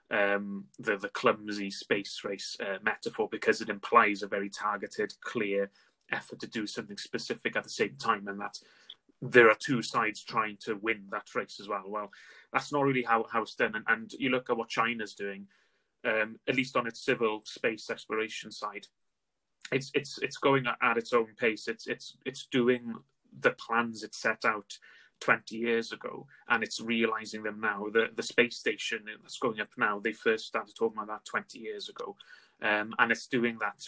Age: 30-49